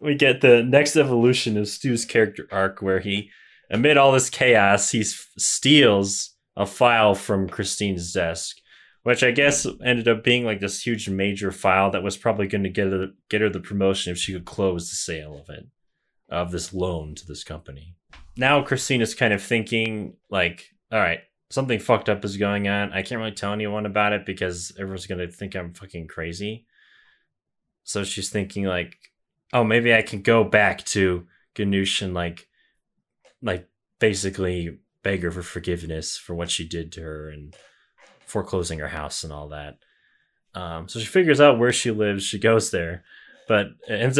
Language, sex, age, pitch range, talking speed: English, male, 20-39, 90-115 Hz, 185 wpm